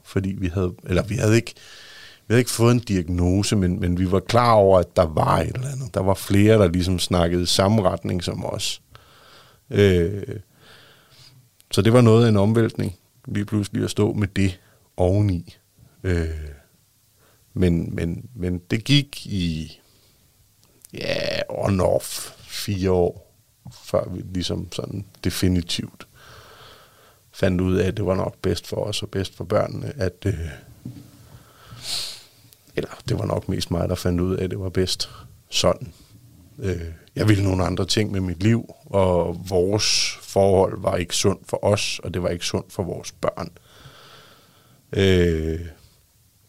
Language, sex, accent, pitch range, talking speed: Danish, male, native, 90-110 Hz, 160 wpm